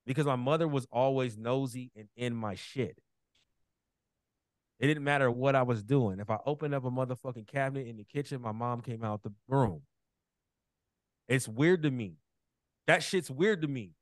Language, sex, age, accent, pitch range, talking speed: English, male, 30-49, American, 130-180 Hz, 180 wpm